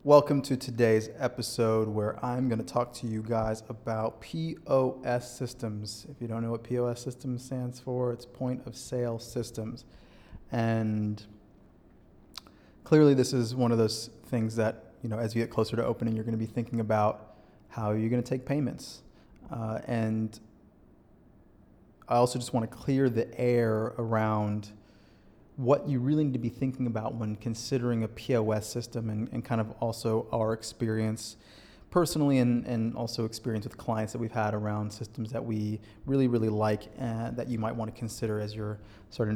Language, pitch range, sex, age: English, 110-125 Hz, male, 30-49